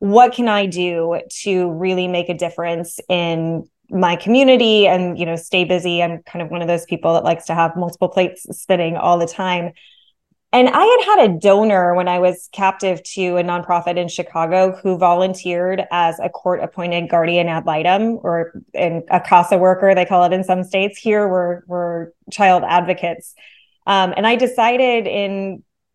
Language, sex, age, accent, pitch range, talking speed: English, female, 20-39, American, 175-205 Hz, 180 wpm